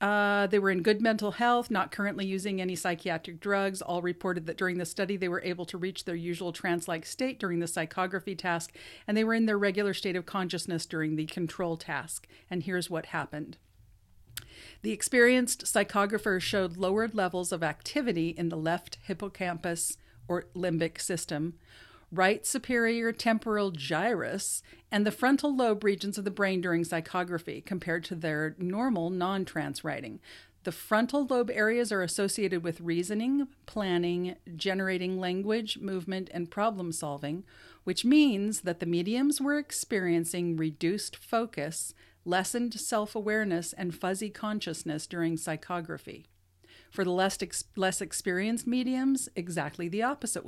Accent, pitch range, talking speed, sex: American, 170-210 Hz, 145 wpm, female